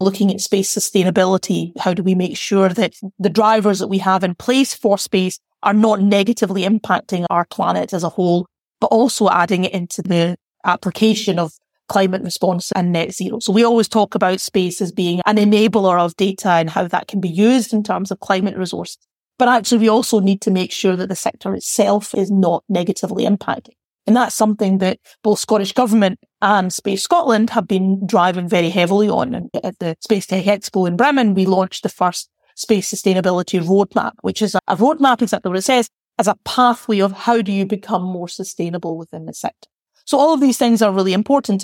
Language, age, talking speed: English, 30-49, 200 wpm